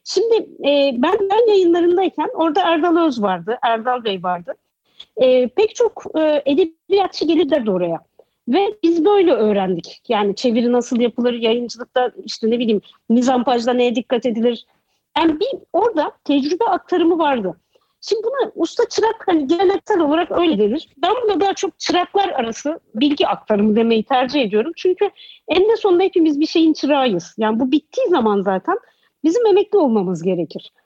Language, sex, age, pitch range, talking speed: Turkish, female, 50-69, 240-345 Hz, 155 wpm